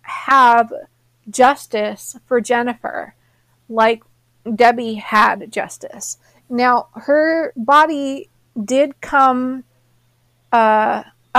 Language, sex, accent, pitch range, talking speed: English, female, American, 210-255 Hz, 75 wpm